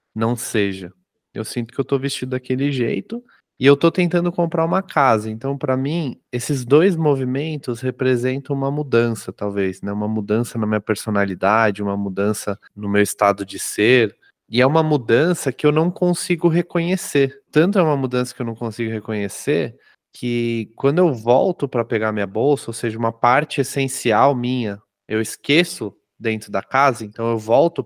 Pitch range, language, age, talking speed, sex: 110-155 Hz, Portuguese, 20-39, 170 wpm, male